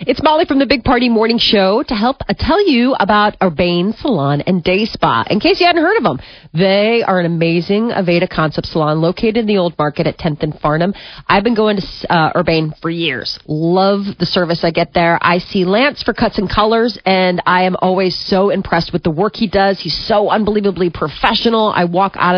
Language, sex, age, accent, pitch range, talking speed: English, female, 30-49, American, 175-235 Hz, 215 wpm